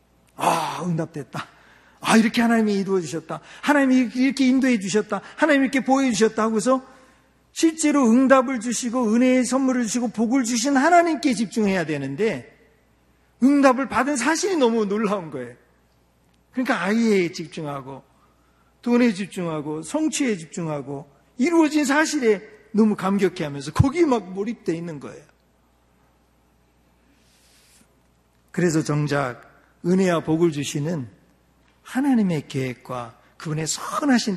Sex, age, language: male, 40-59, Korean